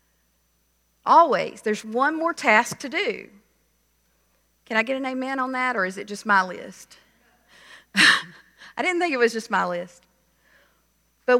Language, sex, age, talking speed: English, female, 40-59, 155 wpm